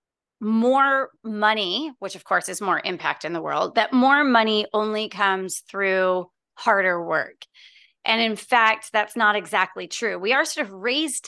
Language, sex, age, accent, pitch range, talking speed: English, female, 30-49, American, 200-240 Hz, 165 wpm